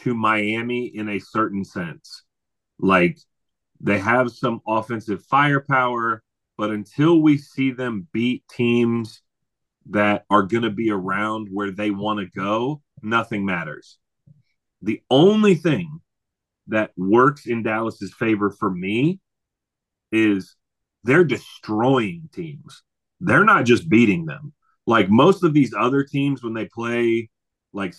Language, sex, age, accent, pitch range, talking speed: English, male, 30-49, American, 105-130 Hz, 130 wpm